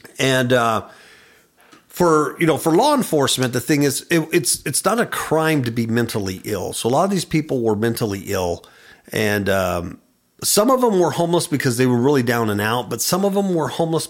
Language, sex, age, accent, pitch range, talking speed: English, male, 50-69, American, 115-165 Hz, 210 wpm